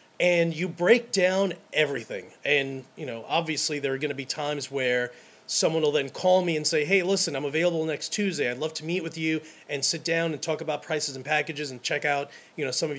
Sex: male